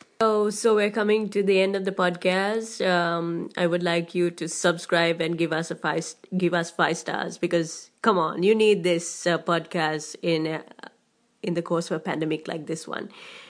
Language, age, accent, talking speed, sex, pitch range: English, 20-39, Indian, 210 wpm, female, 165-190 Hz